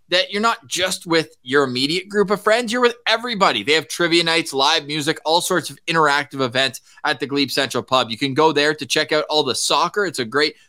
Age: 20-39